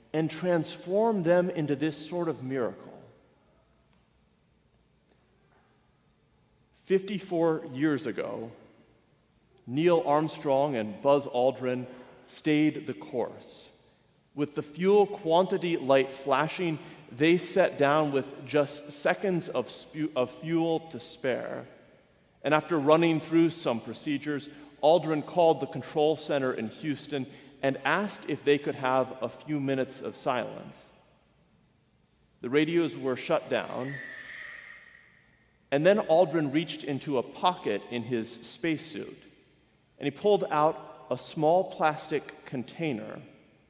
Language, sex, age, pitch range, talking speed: English, male, 40-59, 135-170 Hz, 115 wpm